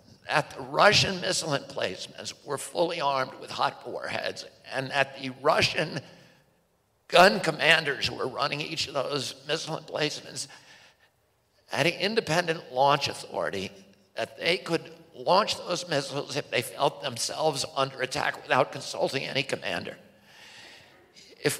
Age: 60-79